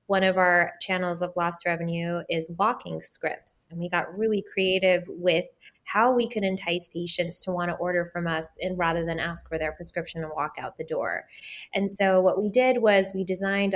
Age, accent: 20-39, American